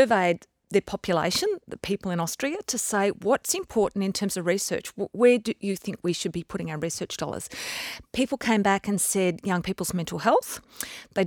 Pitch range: 180-215 Hz